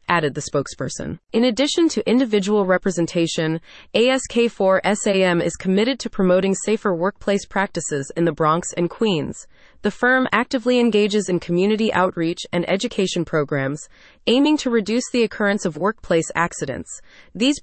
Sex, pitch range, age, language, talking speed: female, 170-230 Hz, 30-49, English, 135 wpm